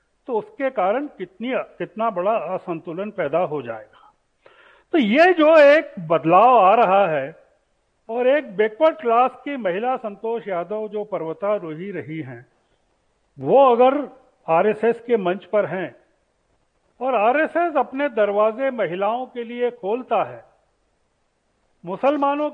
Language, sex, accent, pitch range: Hindi, male, native, 195-260 Hz